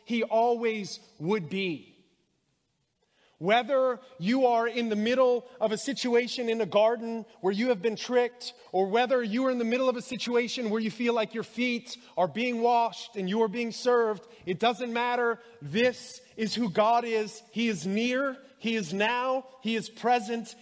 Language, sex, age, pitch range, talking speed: English, male, 30-49, 185-240 Hz, 180 wpm